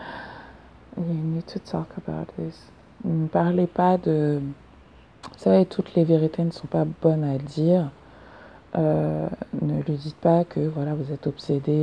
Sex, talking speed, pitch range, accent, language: female, 155 wpm, 150-180 Hz, French, French